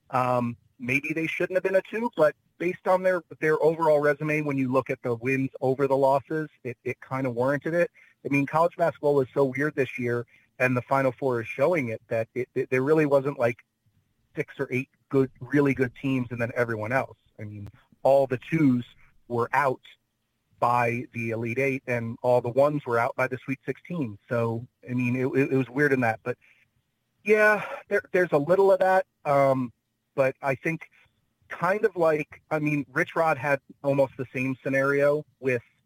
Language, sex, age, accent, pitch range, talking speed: English, male, 40-59, American, 120-145 Hz, 200 wpm